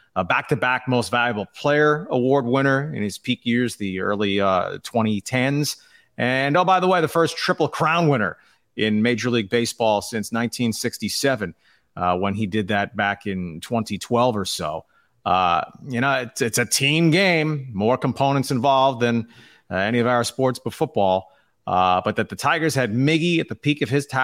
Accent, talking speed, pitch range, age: American, 180 wpm, 110-150 Hz, 30-49